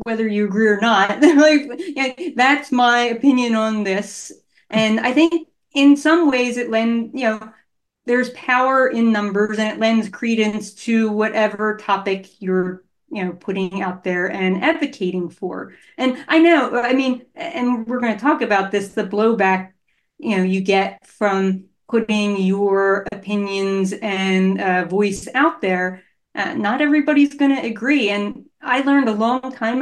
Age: 30-49